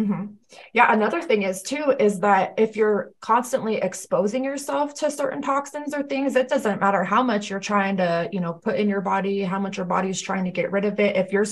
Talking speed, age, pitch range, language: 235 wpm, 20-39, 180-210 Hz, English